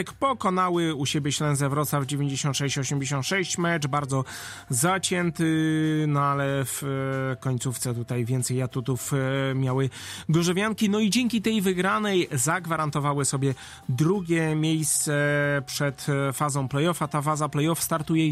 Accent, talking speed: native, 110 wpm